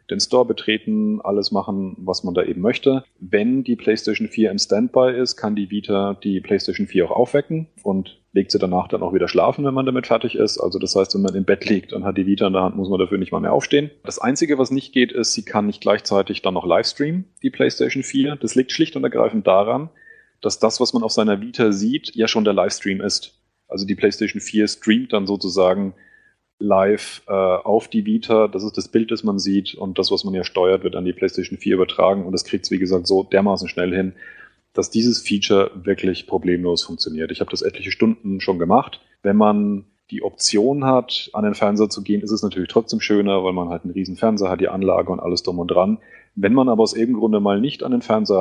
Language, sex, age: German, male, 30-49